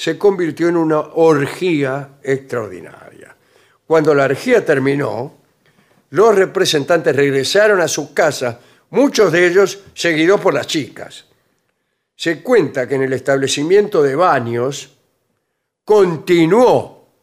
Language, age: Spanish, 60-79